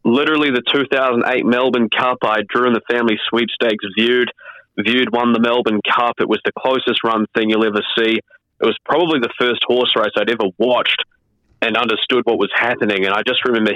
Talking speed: 195 wpm